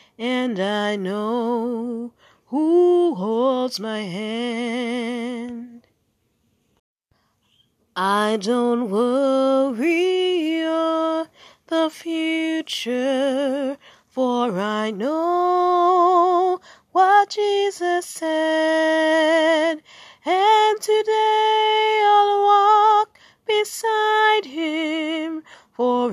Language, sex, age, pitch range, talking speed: English, female, 30-49, 240-360 Hz, 60 wpm